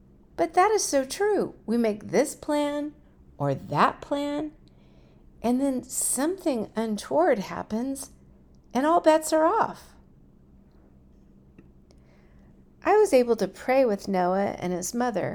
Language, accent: English, American